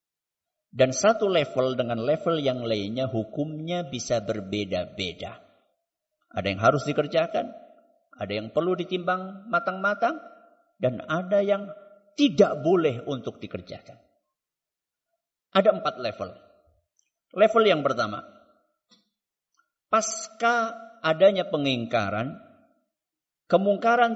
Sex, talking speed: male, 90 wpm